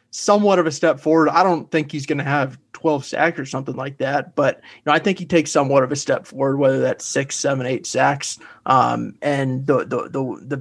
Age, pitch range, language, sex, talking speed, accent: 30-49, 135-165 Hz, English, male, 230 wpm, American